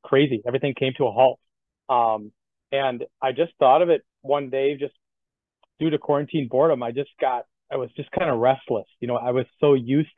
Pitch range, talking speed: 115-140 Hz, 205 wpm